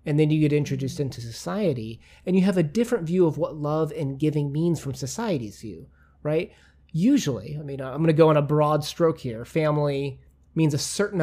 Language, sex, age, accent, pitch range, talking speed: English, male, 30-49, American, 130-160 Hz, 210 wpm